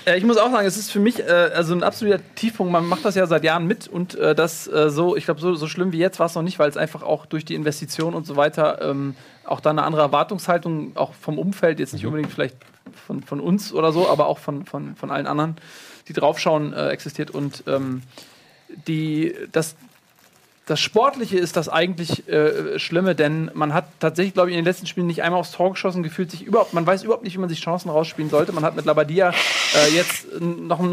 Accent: German